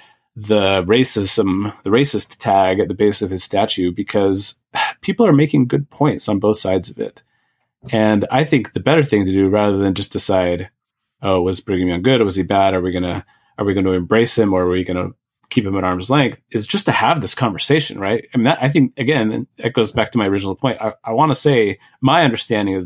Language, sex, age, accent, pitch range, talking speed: English, male, 30-49, American, 95-120 Hz, 230 wpm